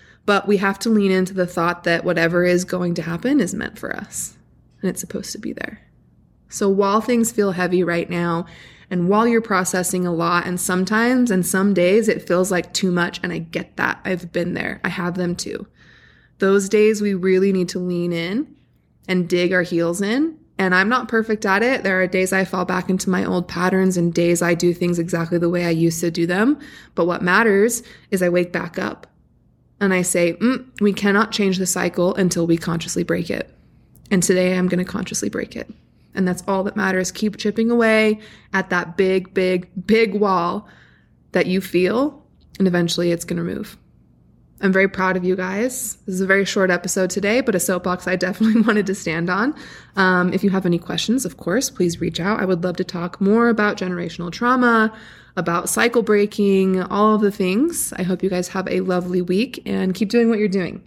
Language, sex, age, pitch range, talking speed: English, female, 20-39, 175-210 Hz, 215 wpm